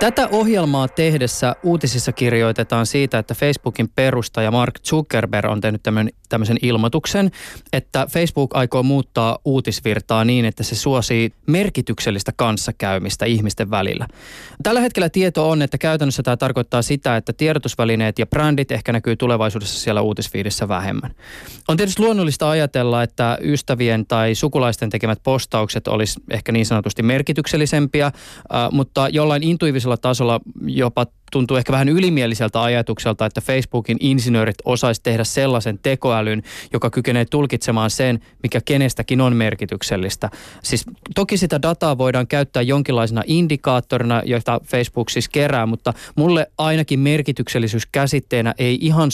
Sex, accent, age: male, native, 20-39